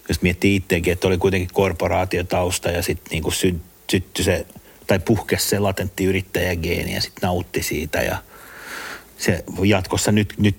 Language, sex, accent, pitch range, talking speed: Finnish, male, native, 95-105 Hz, 130 wpm